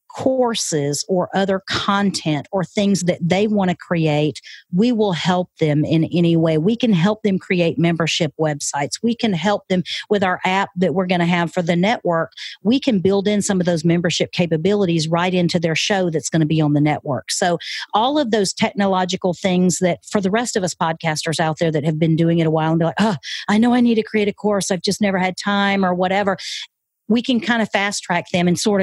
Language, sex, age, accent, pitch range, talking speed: English, female, 40-59, American, 170-210 Hz, 230 wpm